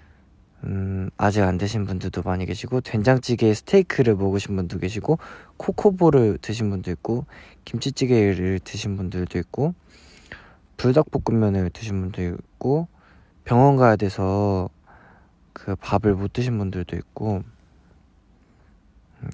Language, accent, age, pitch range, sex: Korean, native, 20-39, 90-110 Hz, male